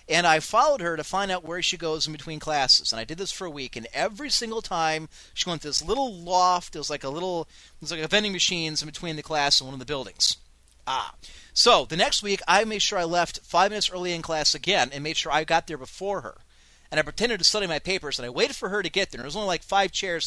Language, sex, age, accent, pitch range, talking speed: English, male, 30-49, American, 150-200 Hz, 280 wpm